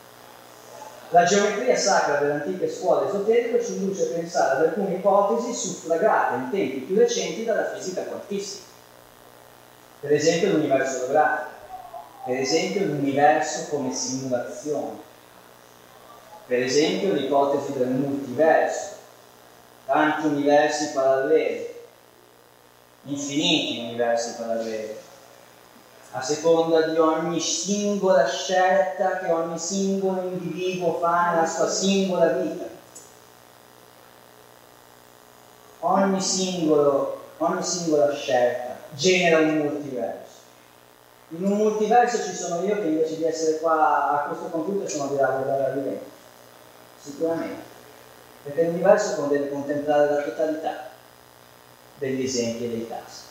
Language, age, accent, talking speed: Italian, 30-49, native, 105 wpm